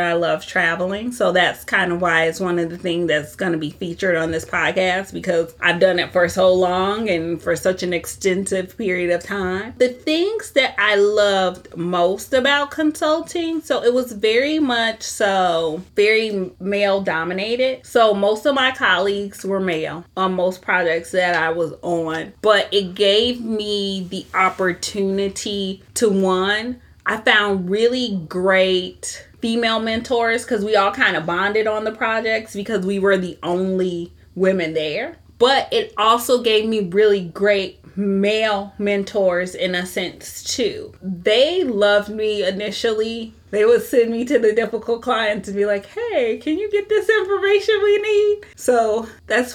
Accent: American